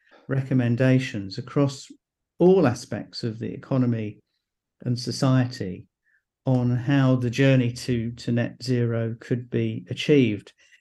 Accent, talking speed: British, 110 wpm